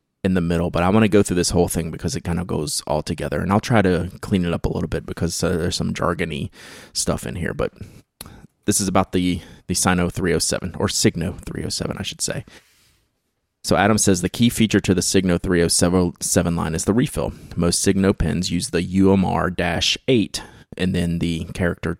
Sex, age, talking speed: male, 30-49, 205 wpm